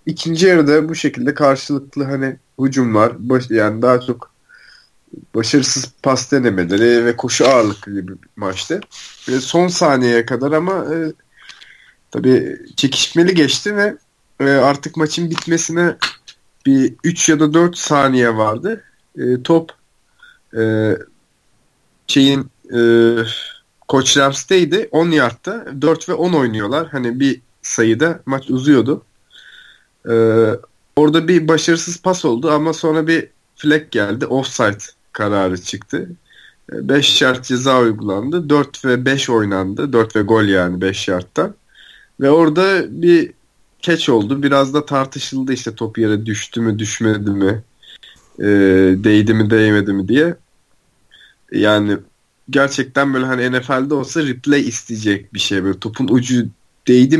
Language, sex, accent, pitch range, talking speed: Turkish, male, native, 110-155 Hz, 130 wpm